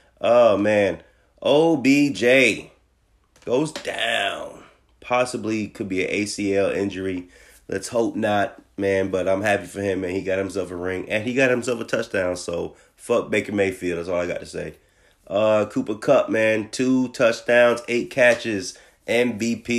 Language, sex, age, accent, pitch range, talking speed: English, male, 30-49, American, 95-130 Hz, 155 wpm